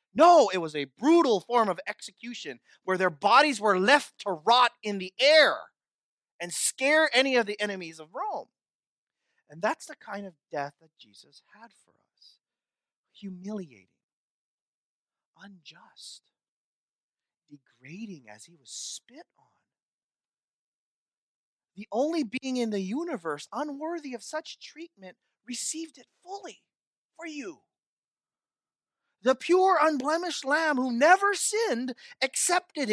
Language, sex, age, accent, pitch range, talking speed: English, male, 30-49, American, 175-285 Hz, 125 wpm